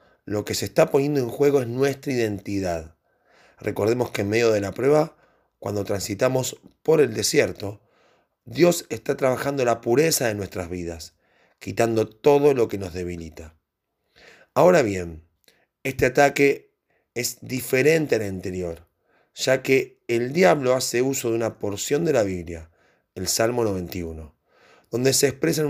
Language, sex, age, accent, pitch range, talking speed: Spanish, male, 30-49, Argentinian, 100-140 Hz, 145 wpm